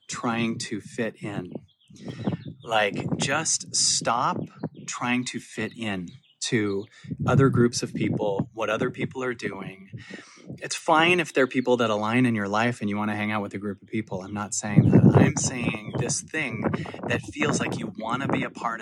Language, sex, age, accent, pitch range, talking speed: English, male, 30-49, American, 115-140 Hz, 190 wpm